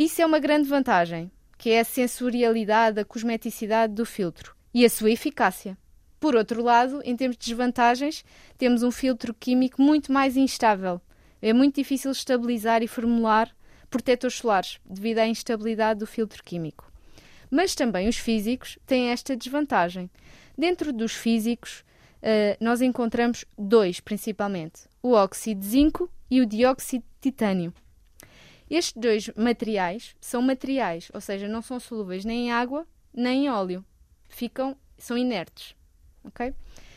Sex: female